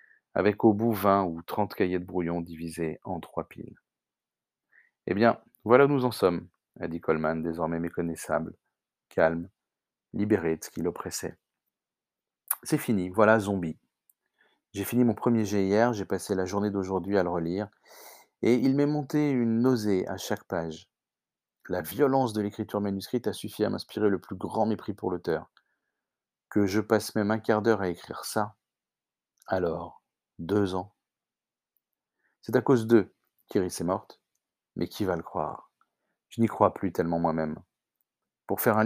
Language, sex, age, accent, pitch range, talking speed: French, male, 40-59, French, 90-110 Hz, 165 wpm